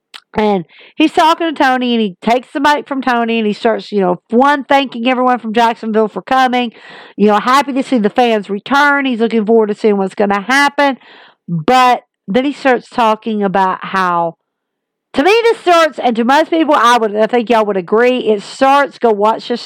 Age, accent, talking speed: 50-69, American, 205 wpm